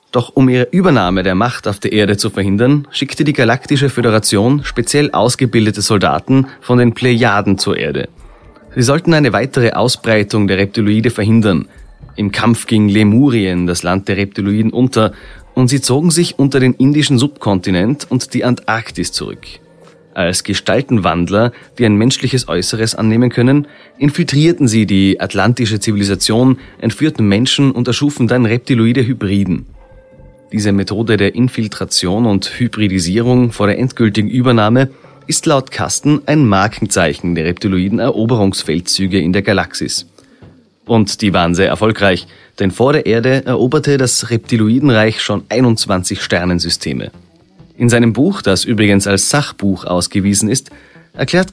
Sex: male